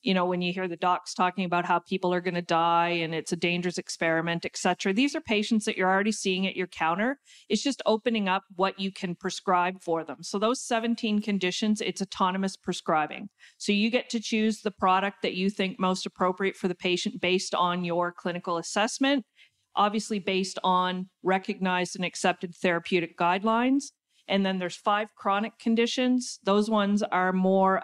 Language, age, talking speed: English, 40-59, 190 wpm